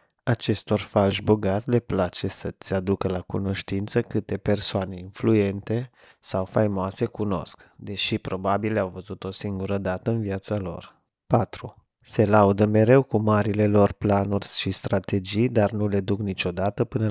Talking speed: 145 wpm